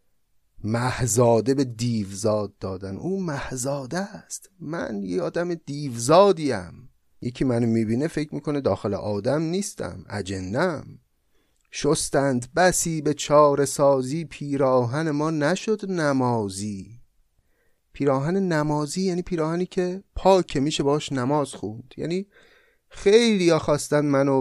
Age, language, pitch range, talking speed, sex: 30-49, Persian, 110-155 Hz, 105 wpm, male